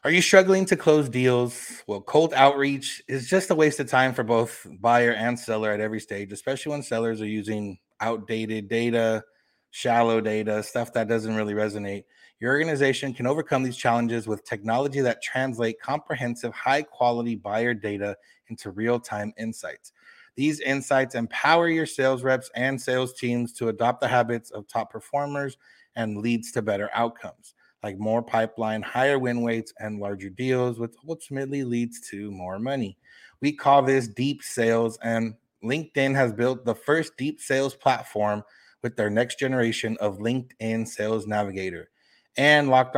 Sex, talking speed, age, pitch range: male, 160 wpm, 30-49, 110-135 Hz